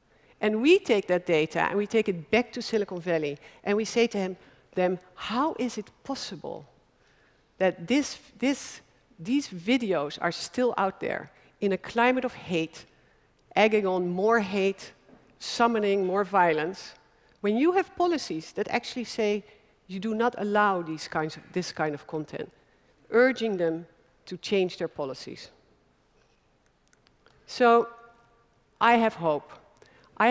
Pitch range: 180-240 Hz